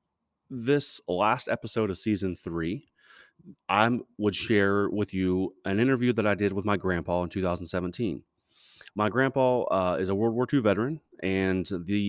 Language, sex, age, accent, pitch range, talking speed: English, male, 30-49, American, 90-115 Hz, 160 wpm